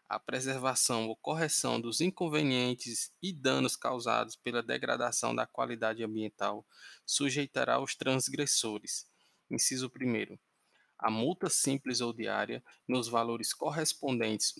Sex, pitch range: male, 120-160 Hz